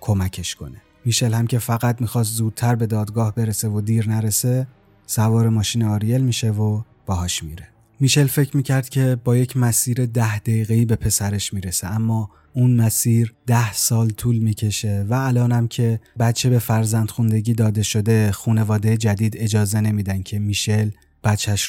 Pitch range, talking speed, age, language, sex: 100-120 Hz, 160 wpm, 30-49, Persian, male